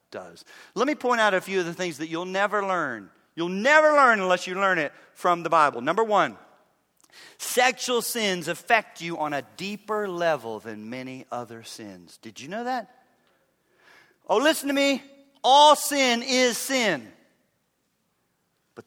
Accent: American